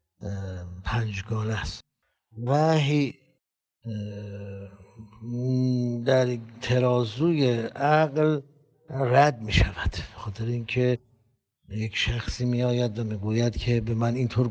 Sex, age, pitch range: male, 60-79, 105-130 Hz